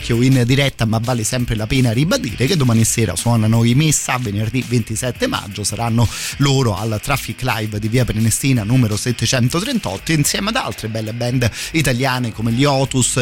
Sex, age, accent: male, 30-49, native